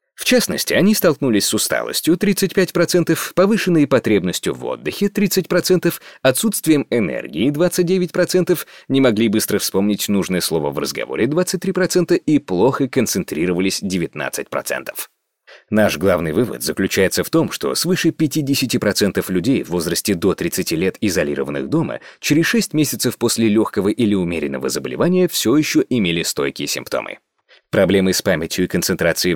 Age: 30-49